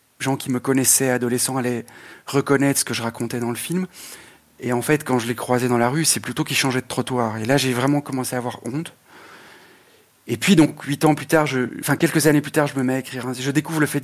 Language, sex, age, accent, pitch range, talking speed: French, male, 40-59, French, 125-155 Hz, 255 wpm